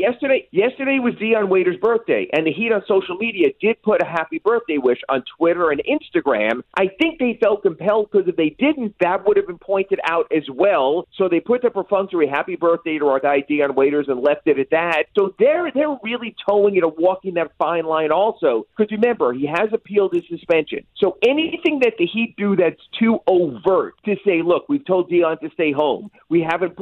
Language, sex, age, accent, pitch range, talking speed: English, male, 40-59, American, 150-215 Hz, 210 wpm